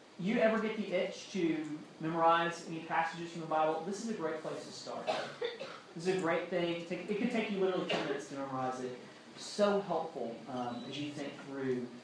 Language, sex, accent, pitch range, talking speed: English, male, American, 130-175 Hz, 215 wpm